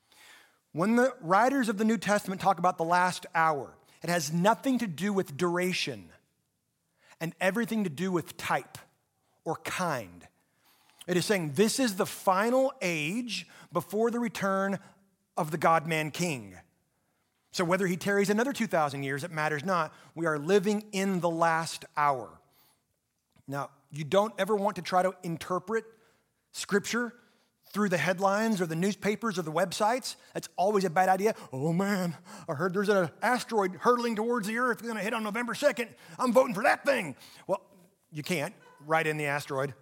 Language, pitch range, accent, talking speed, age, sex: English, 165-220 Hz, American, 170 wpm, 30-49, male